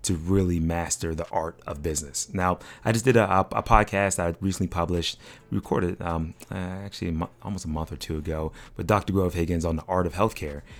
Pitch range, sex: 85-100 Hz, male